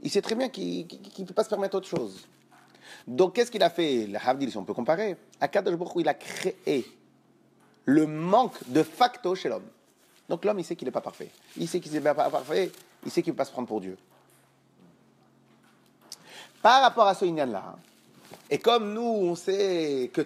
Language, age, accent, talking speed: French, 40-59, French, 205 wpm